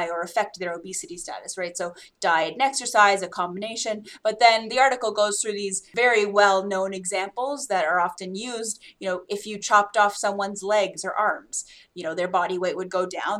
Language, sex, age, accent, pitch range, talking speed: English, female, 20-39, American, 185-220 Hz, 195 wpm